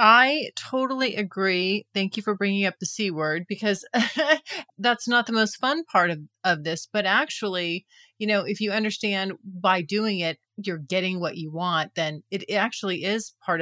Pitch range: 185-230 Hz